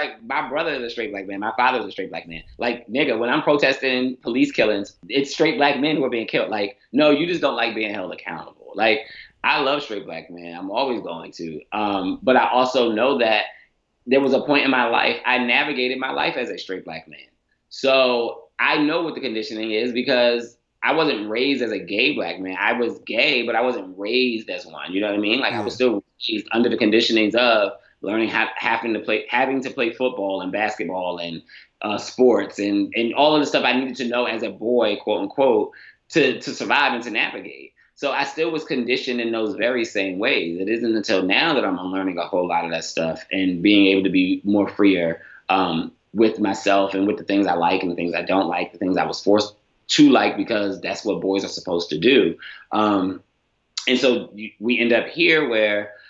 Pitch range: 100-130 Hz